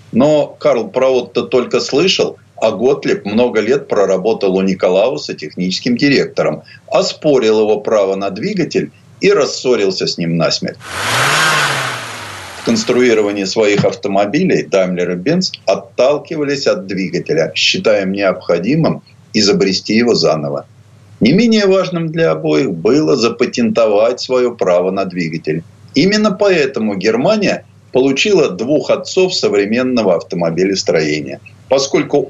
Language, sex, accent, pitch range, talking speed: Russian, male, native, 100-165 Hz, 115 wpm